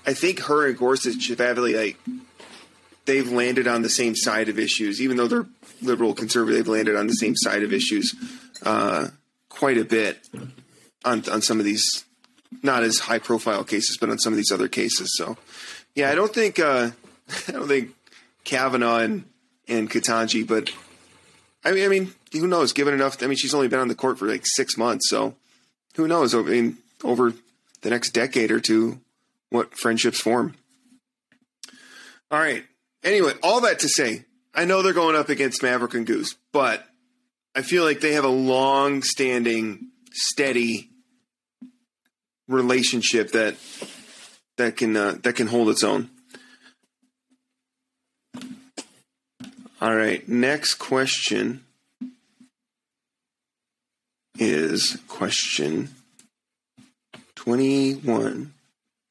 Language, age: English, 30-49